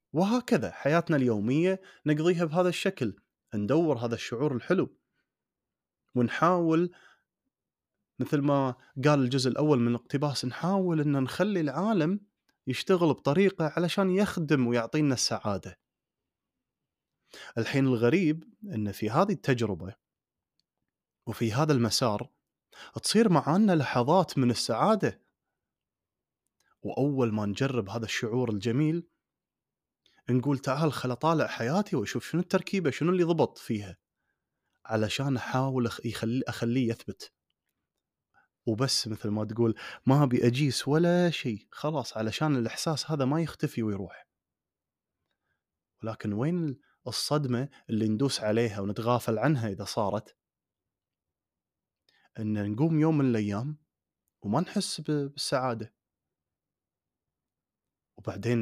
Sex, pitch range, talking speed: male, 115-160 Hz, 100 wpm